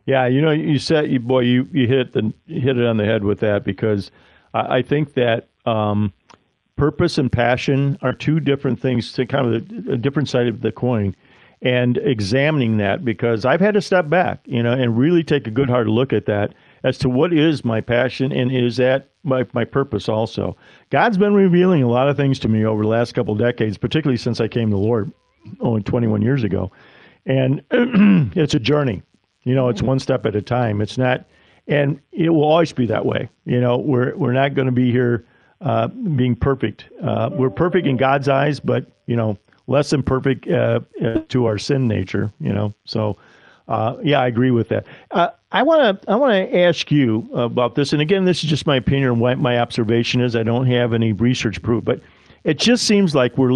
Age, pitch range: 50-69, 115-140 Hz